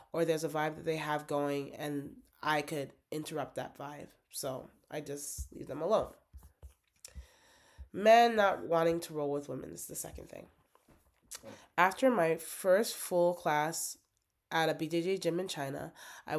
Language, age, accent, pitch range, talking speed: English, 20-39, American, 145-170 Hz, 155 wpm